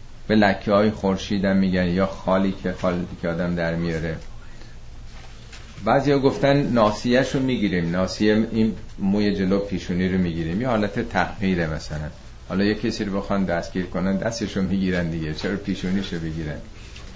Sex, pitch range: male, 95-115 Hz